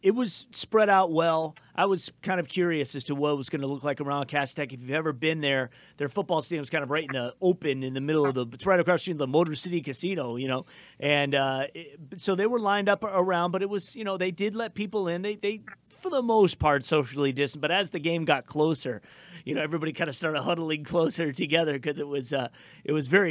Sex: male